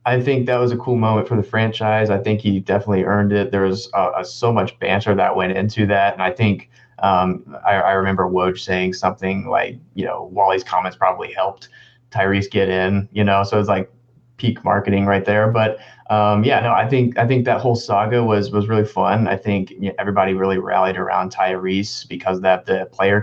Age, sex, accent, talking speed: 20-39, male, American, 220 wpm